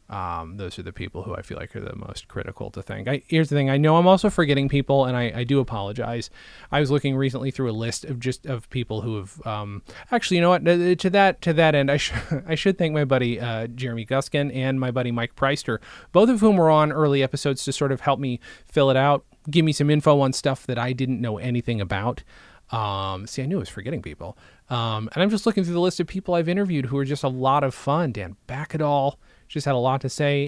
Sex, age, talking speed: male, 30-49, 260 wpm